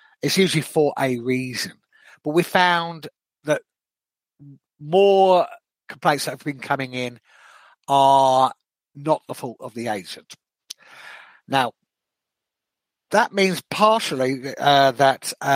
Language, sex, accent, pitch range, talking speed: English, male, British, 125-155 Hz, 110 wpm